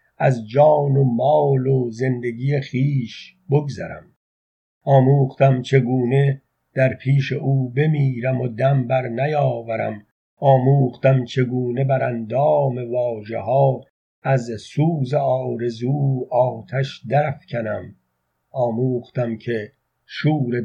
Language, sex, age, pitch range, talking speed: Persian, male, 50-69, 120-145 Hz, 90 wpm